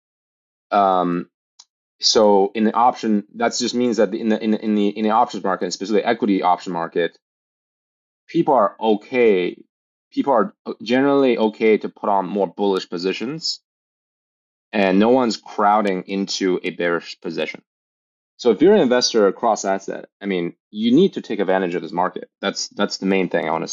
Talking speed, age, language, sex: 175 wpm, 20-39, English, male